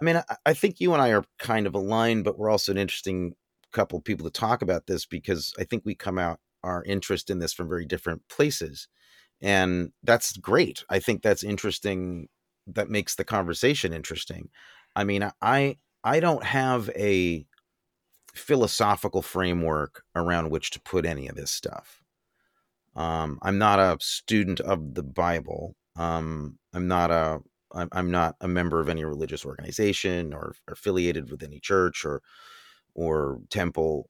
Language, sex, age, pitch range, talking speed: English, male, 30-49, 80-100 Hz, 165 wpm